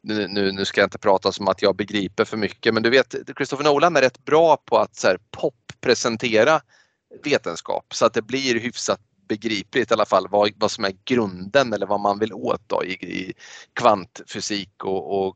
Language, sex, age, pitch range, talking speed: Swedish, male, 30-49, 105-130 Hz, 180 wpm